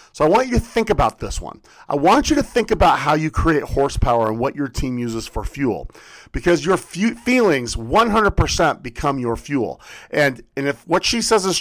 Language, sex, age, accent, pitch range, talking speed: English, male, 40-59, American, 115-165 Hz, 205 wpm